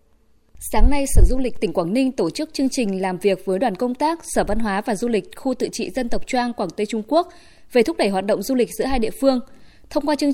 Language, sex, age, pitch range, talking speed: Vietnamese, female, 20-39, 205-275 Hz, 280 wpm